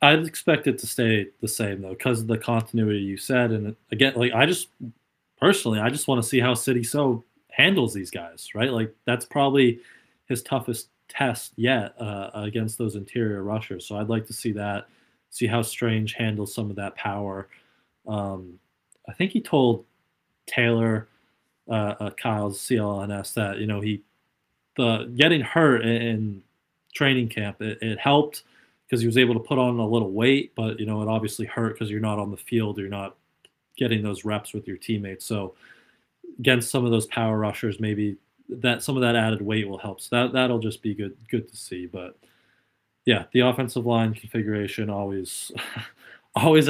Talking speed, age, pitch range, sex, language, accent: 185 wpm, 20-39, 105-120 Hz, male, English, American